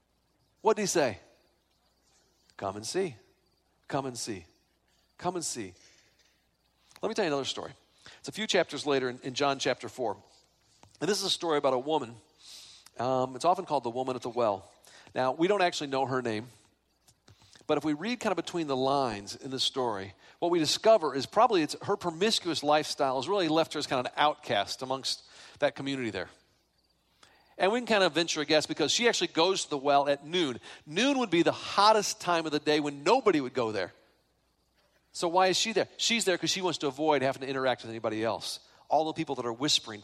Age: 40-59